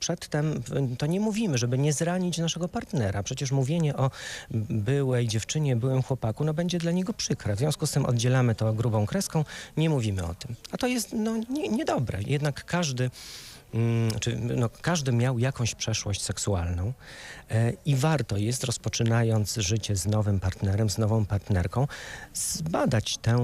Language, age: Polish, 40-59